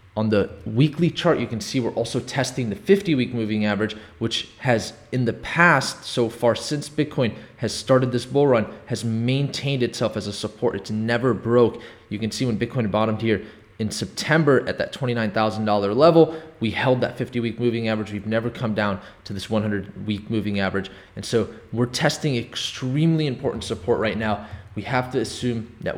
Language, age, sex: English, 20-39, male